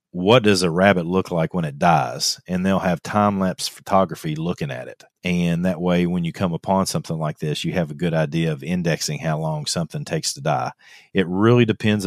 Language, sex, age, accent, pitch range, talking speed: English, male, 40-59, American, 85-115 Hz, 215 wpm